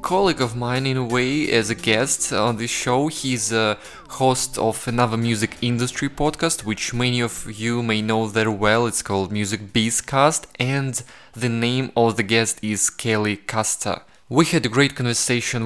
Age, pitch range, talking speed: 20-39, 105-120 Hz, 180 wpm